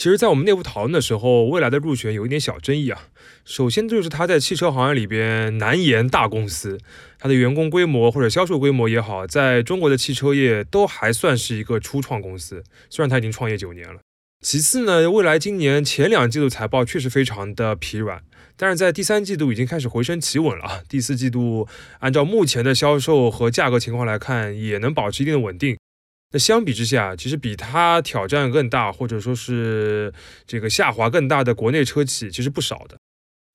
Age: 20-39